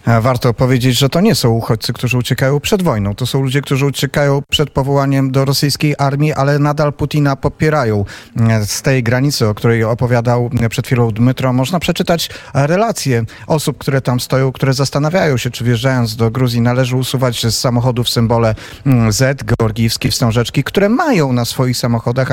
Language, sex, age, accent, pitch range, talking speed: Polish, male, 40-59, native, 115-135 Hz, 165 wpm